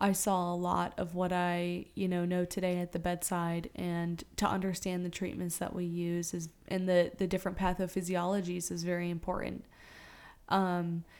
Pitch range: 180-205 Hz